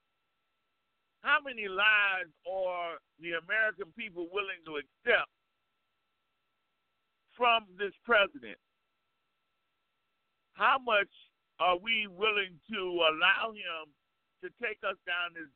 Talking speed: 100 wpm